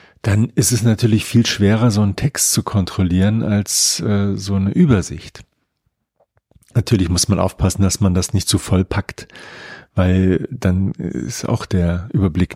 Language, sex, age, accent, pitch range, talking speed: German, male, 40-59, German, 95-120 Hz, 160 wpm